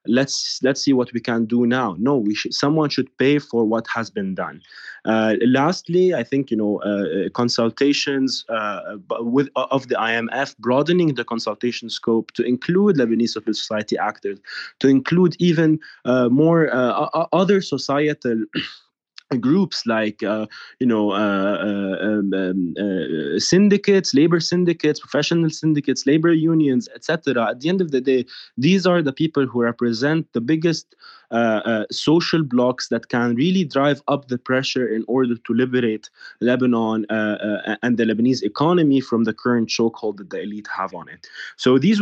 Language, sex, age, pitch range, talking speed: English, male, 20-39, 110-145 Hz, 165 wpm